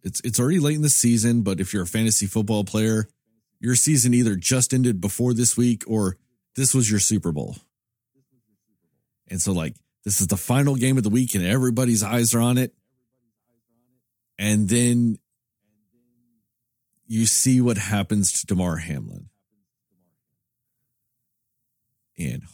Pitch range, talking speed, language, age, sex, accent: 95-125 Hz, 145 wpm, English, 40-59, male, American